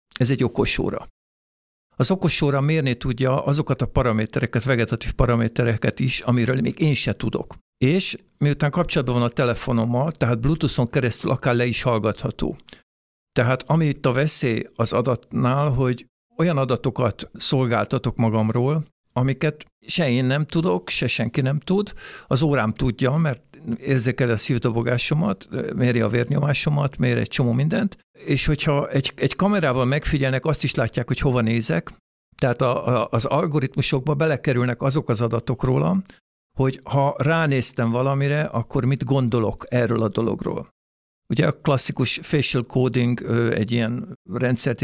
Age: 60-79